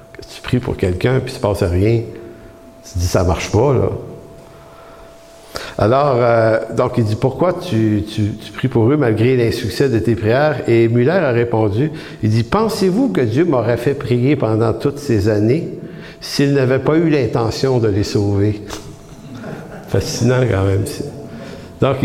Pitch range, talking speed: 105-130 Hz, 170 wpm